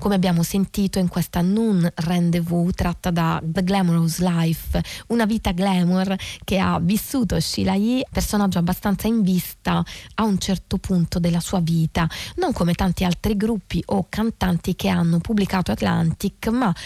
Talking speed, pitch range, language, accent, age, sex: 155 wpm, 175-225 Hz, Italian, native, 20-39, female